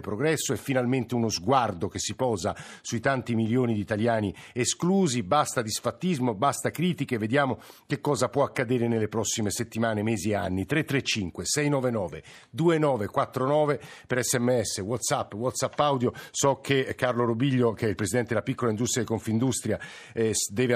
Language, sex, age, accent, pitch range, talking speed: Italian, male, 50-69, native, 115-140 Hz, 145 wpm